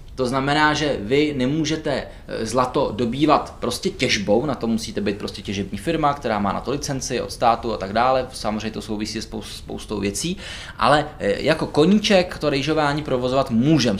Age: 20-39